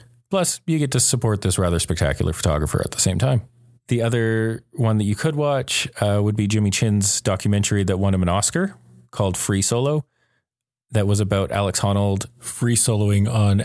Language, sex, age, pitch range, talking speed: English, male, 30-49, 90-110 Hz, 185 wpm